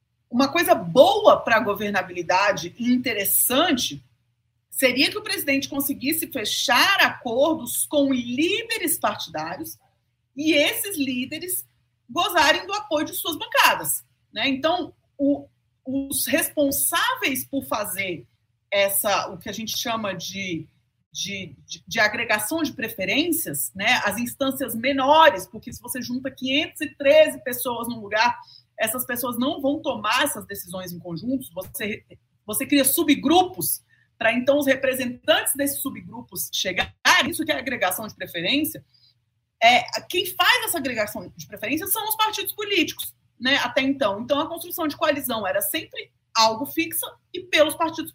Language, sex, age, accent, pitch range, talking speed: Portuguese, female, 40-59, Brazilian, 210-315 Hz, 135 wpm